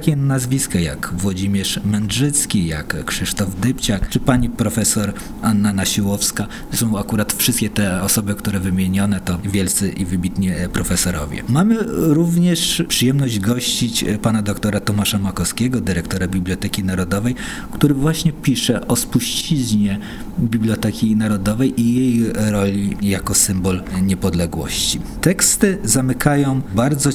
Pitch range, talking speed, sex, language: 95-120 Hz, 115 wpm, male, Polish